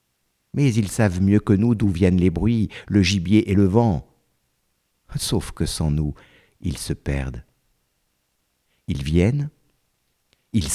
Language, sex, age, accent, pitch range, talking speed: French, male, 60-79, French, 75-110 Hz, 140 wpm